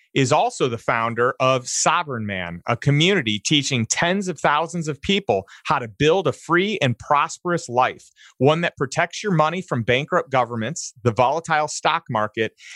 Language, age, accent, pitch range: English, 30-49, American, 120-170 Hz